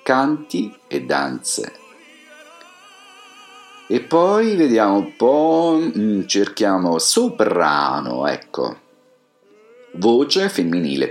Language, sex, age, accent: Chinese, male, 50-69, Italian